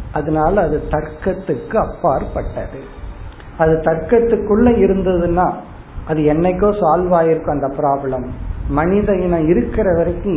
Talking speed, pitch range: 100 wpm, 150-195 Hz